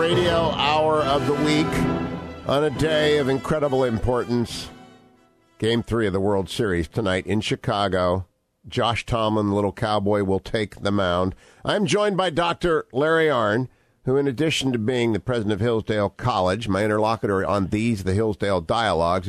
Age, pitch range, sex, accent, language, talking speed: 50-69, 100-130 Hz, male, American, English, 160 wpm